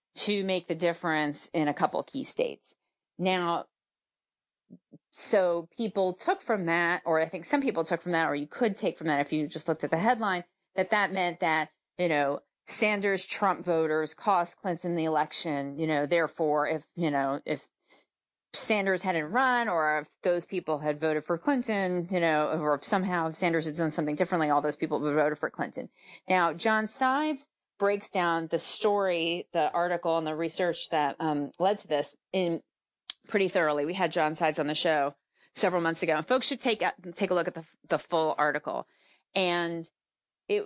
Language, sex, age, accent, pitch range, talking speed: English, female, 30-49, American, 155-200 Hz, 190 wpm